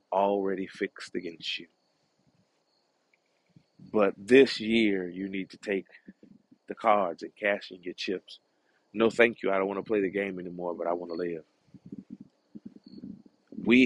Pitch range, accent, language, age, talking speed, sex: 90-115 Hz, American, English, 30-49, 150 wpm, male